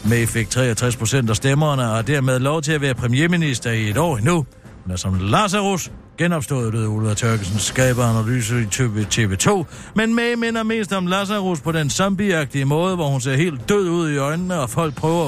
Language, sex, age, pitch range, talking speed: Danish, male, 60-79, 125-180 Hz, 195 wpm